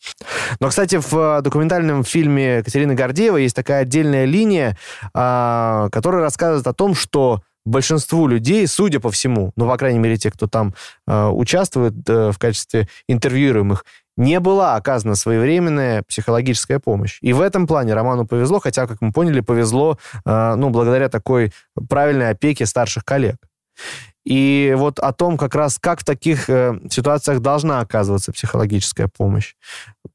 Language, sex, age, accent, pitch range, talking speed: Russian, male, 20-39, native, 115-140 Hz, 140 wpm